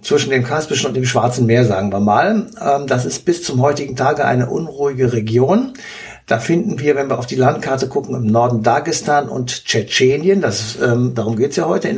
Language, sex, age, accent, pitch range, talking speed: German, male, 60-79, German, 120-150 Hz, 205 wpm